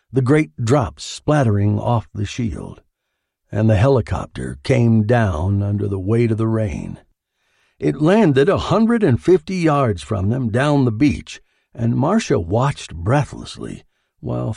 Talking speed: 145 wpm